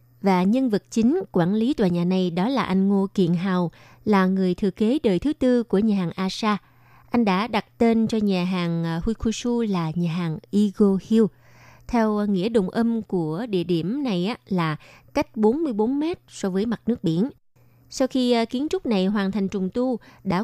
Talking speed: 195 wpm